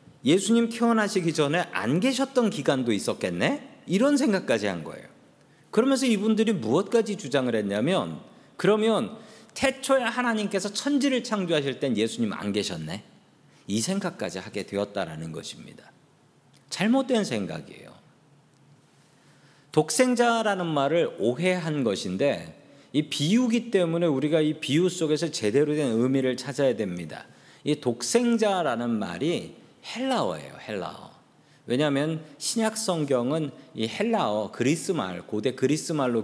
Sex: male